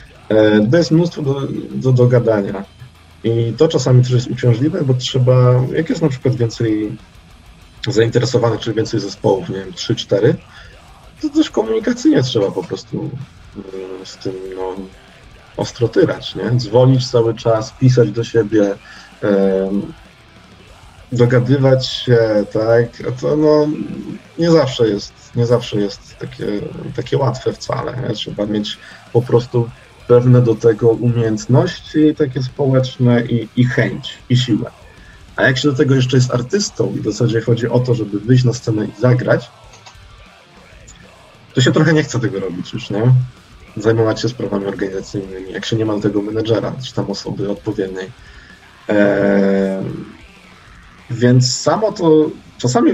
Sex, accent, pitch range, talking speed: male, native, 105-130 Hz, 140 wpm